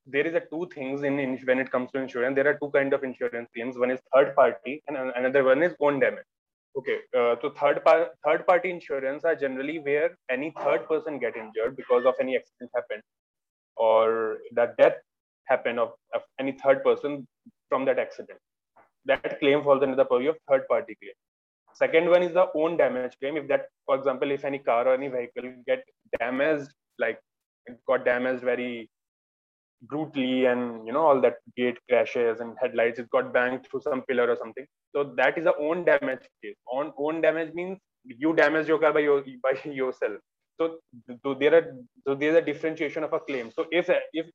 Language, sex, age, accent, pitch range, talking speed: English, male, 20-39, Indian, 130-165 Hz, 200 wpm